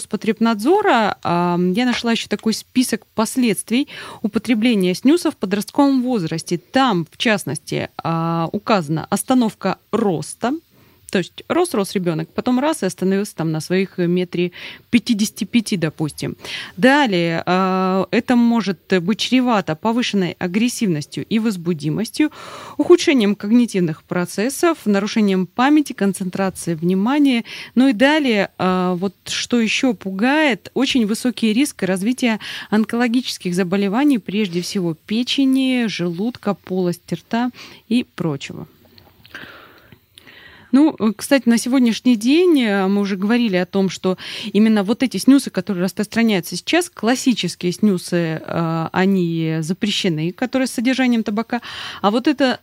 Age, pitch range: 20-39, 180-245 Hz